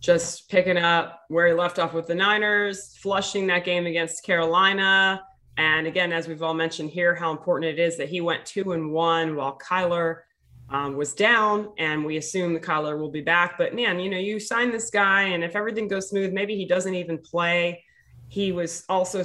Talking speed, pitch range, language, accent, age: 205 wpm, 165-200 Hz, English, American, 20-39